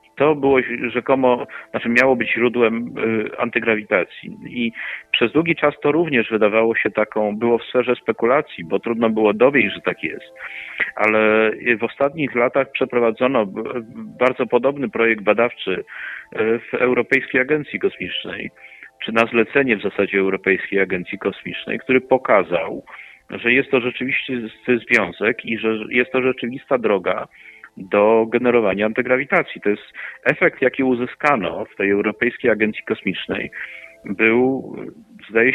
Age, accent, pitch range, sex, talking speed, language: 40-59, native, 110-130 Hz, male, 130 wpm, Polish